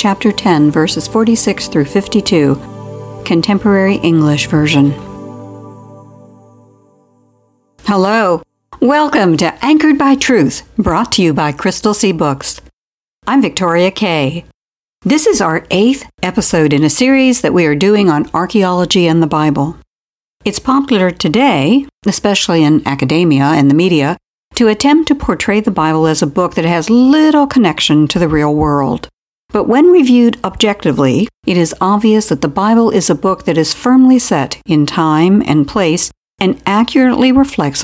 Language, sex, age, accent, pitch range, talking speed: English, female, 60-79, American, 155-230 Hz, 145 wpm